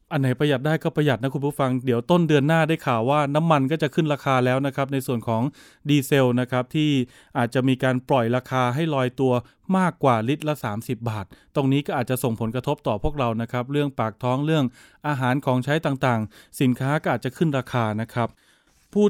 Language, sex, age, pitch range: Thai, male, 20-39, 130-160 Hz